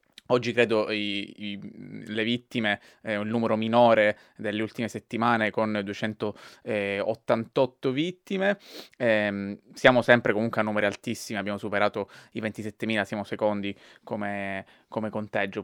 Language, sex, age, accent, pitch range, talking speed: Italian, male, 20-39, native, 105-120 Hz, 115 wpm